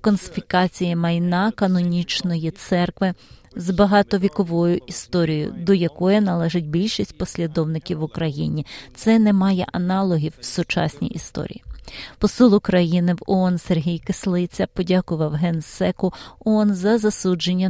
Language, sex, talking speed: Ukrainian, female, 110 wpm